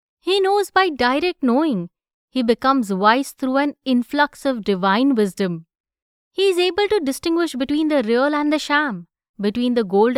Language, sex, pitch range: English, female, 230-305 Hz